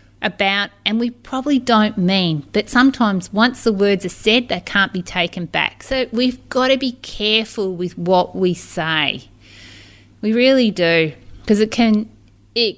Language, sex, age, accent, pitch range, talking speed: English, female, 30-49, Australian, 165-215 Hz, 165 wpm